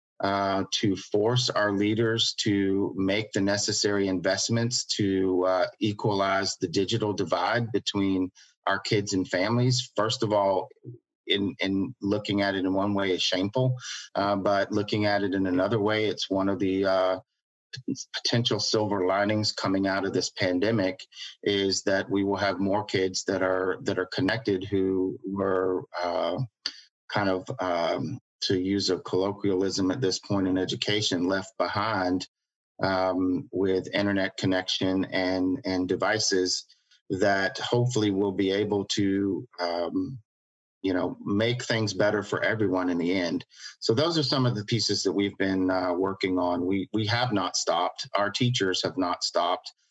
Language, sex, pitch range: English, male, 95-105 Hz